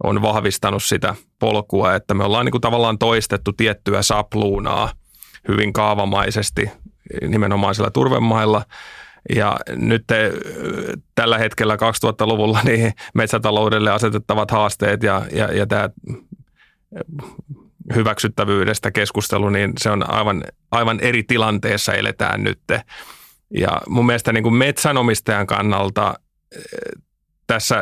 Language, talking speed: Finnish, 105 wpm